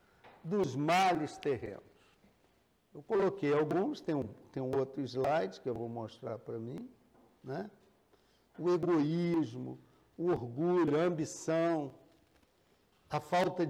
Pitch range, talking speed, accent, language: 155-200 Hz, 115 wpm, Brazilian, Portuguese